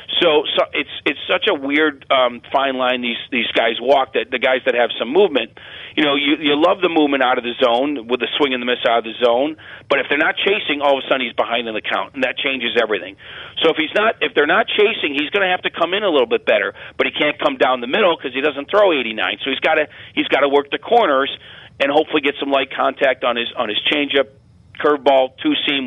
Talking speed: 270 wpm